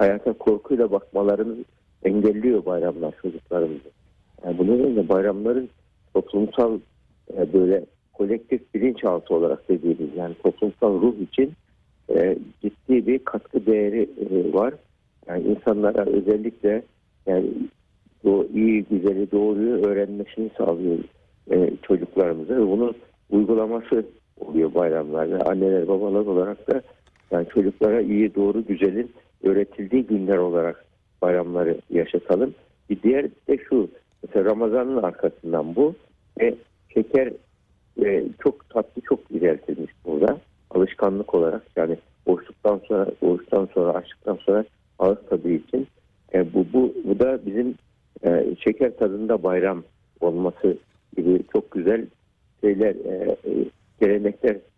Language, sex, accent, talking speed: Turkish, male, native, 110 wpm